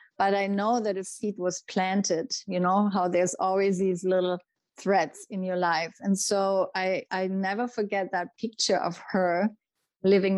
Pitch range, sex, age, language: 185-215 Hz, female, 30-49, English